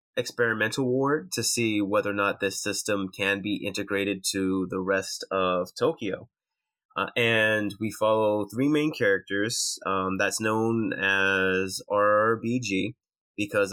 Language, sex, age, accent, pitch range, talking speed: English, male, 20-39, American, 95-115 Hz, 130 wpm